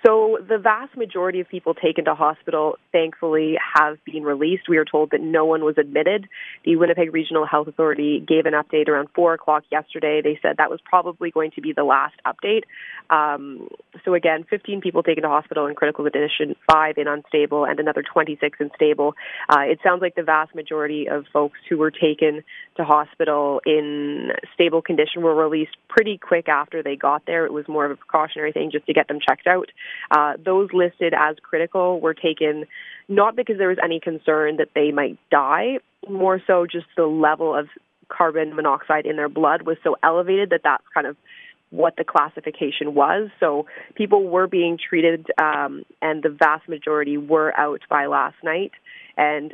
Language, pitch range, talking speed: English, 150-175 Hz, 190 wpm